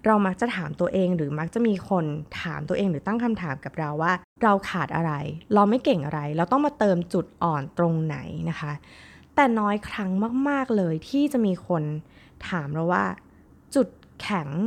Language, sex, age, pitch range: Thai, female, 20-39, 160-210 Hz